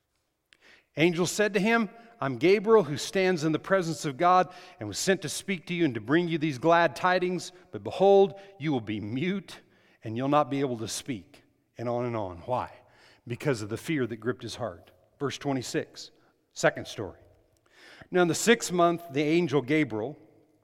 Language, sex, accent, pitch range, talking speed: English, male, American, 140-185 Hz, 190 wpm